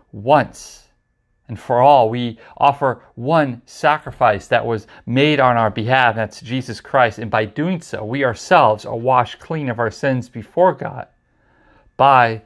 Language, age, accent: English, 40-59, American